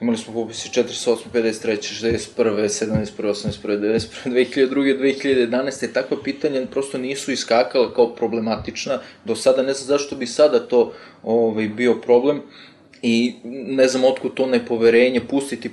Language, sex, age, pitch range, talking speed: Croatian, male, 20-39, 110-130 Hz, 135 wpm